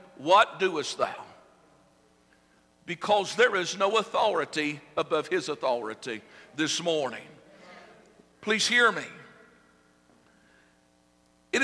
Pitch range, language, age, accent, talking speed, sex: 190-240 Hz, English, 60-79, American, 90 wpm, male